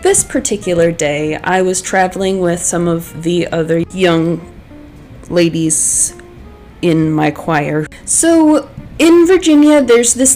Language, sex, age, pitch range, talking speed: English, female, 20-39, 170-210 Hz, 120 wpm